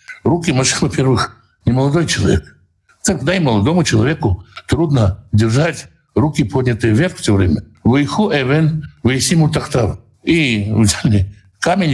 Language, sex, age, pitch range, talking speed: Russian, male, 60-79, 115-170 Hz, 100 wpm